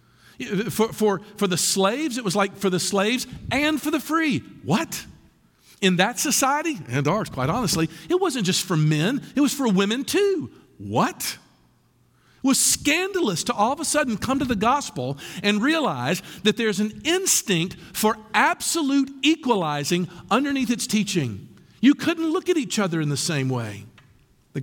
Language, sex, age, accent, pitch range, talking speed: English, male, 50-69, American, 155-230 Hz, 170 wpm